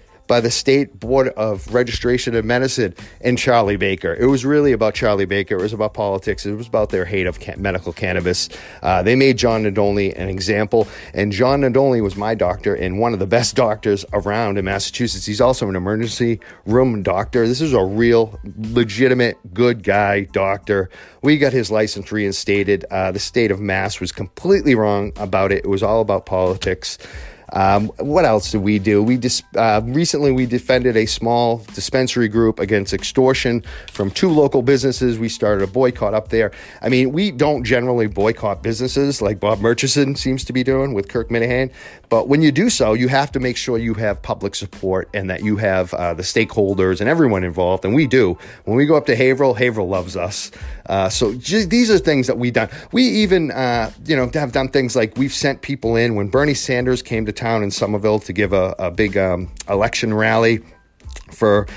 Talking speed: 200 wpm